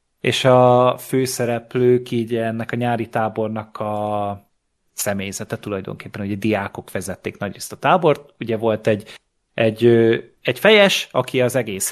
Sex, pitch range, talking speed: male, 115-140 Hz, 130 wpm